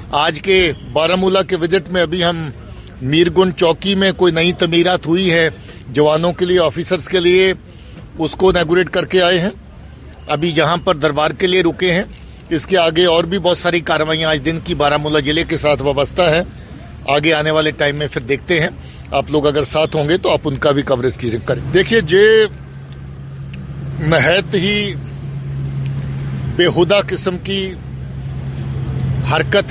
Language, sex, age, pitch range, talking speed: Urdu, male, 50-69, 145-190 Hz, 175 wpm